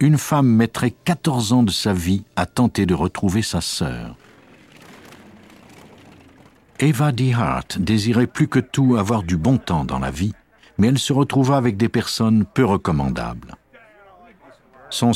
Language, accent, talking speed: French, French, 145 wpm